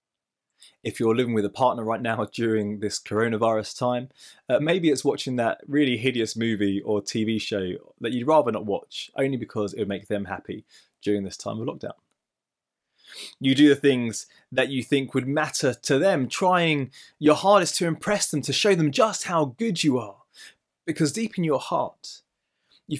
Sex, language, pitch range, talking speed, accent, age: male, English, 115-160 Hz, 185 wpm, British, 20-39